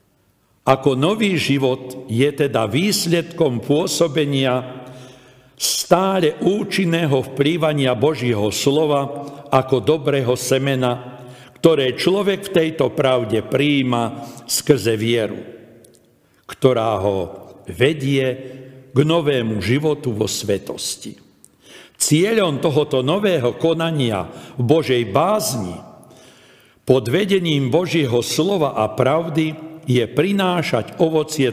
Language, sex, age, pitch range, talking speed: Slovak, male, 60-79, 125-160 Hz, 90 wpm